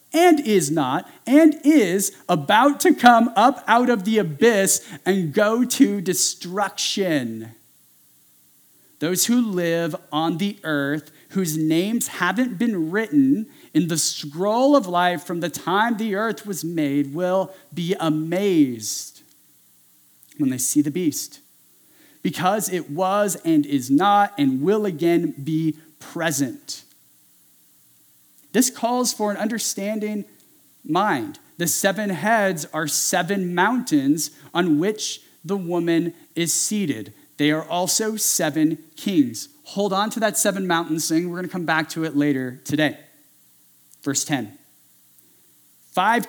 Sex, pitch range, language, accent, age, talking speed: male, 150-215 Hz, English, American, 40-59, 130 wpm